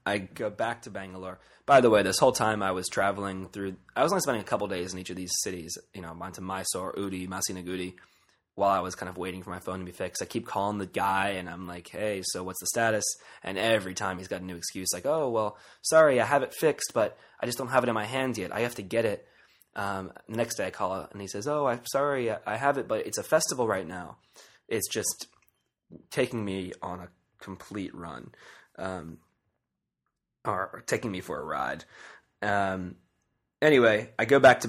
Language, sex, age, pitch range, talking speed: English, male, 20-39, 90-105 Hz, 225 wpm